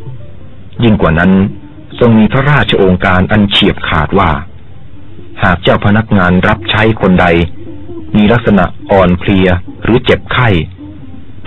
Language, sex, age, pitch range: Thai, male, 30-49, 90-110 Hz